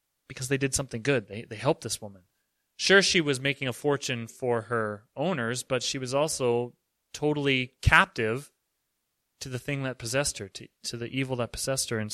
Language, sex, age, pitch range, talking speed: English, male, 30-49, 120-155 Hz, 195 wpm